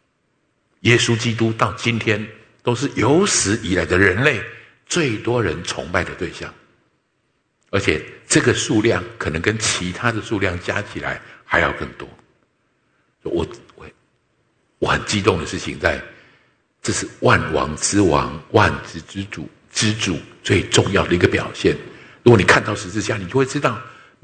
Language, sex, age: English, male, 60-79